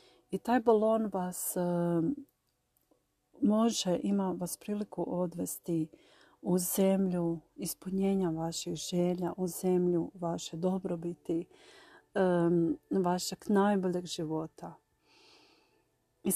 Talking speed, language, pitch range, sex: 90 wpm, Croatian, 175-210 Hz, female